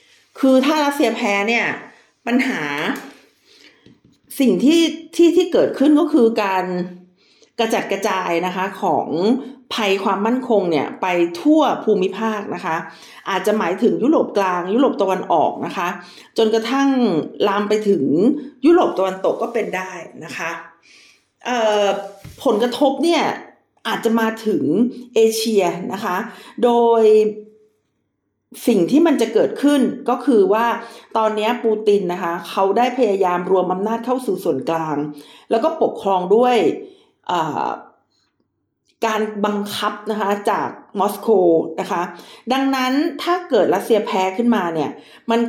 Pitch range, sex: 195-255 Hz, female